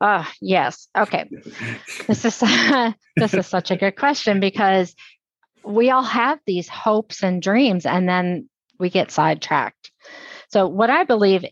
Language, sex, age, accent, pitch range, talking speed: English, female, 40-59, American, 165-210 Hz, 145 wpm